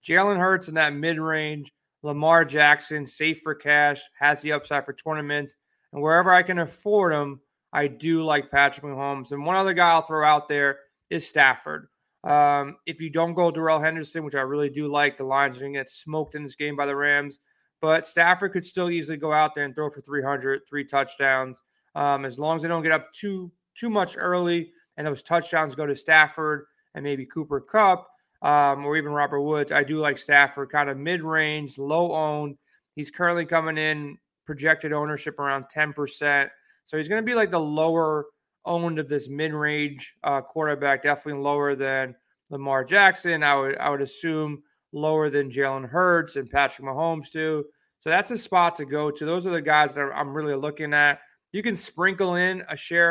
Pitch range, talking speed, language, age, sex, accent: 145-165 Hz, 195 wpm, English, 30-49, male, American